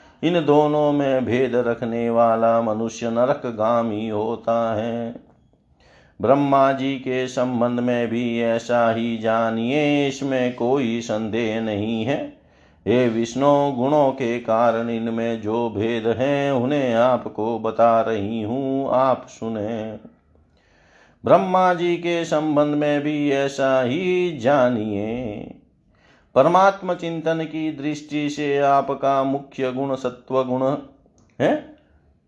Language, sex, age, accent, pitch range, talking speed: Hindi, male, 50-69, native, 115-140 Hz, 115 wpm